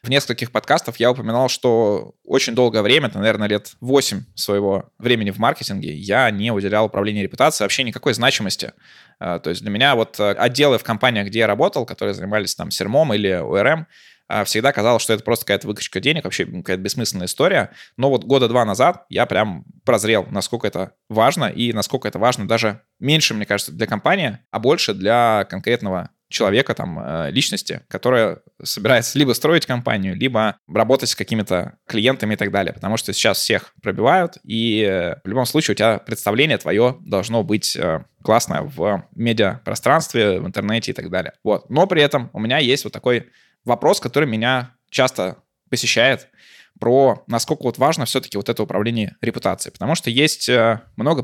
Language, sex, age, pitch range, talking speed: Russian, male, 20-39, 105-130 Hz, 170 wpm